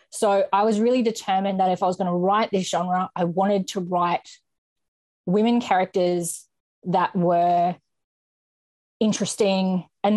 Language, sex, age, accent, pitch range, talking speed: English, female, 20-39, Australian, 190-245 Hz, 140 wpm